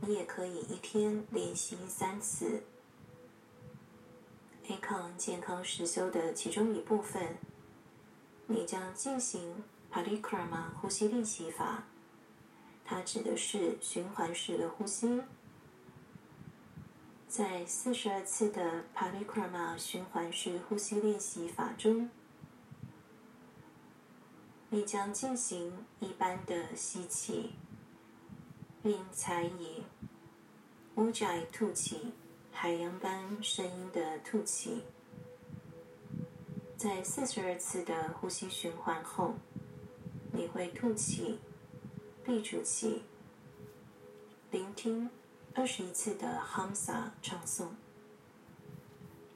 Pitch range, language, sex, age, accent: 170-215 Hz, Chinese, female, 20-39, native